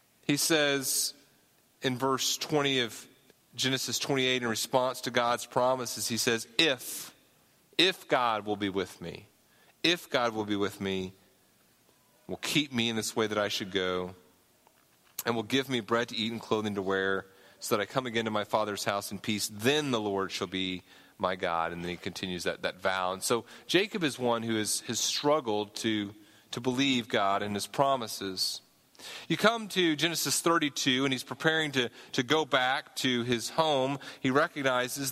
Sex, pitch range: male, 110-140 Hz